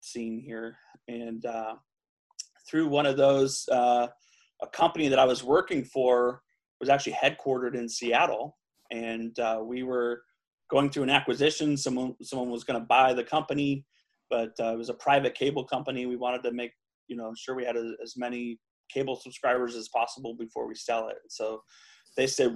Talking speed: 180 wpm